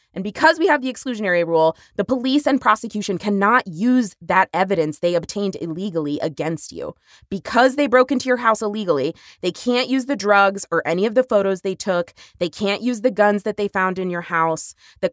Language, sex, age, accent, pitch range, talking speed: English, female, 20-39, American, 175-245 Hz, 200 wpm